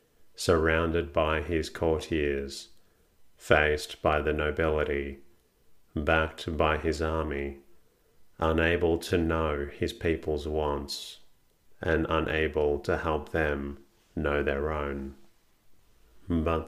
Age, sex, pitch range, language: 40-59, male, 70-80 Hz, English